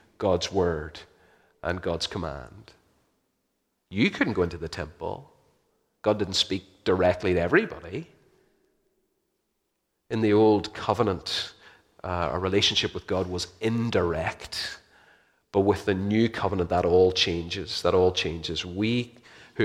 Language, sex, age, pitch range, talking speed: English, male, 30-49, 90-115 Hz, 125 wpm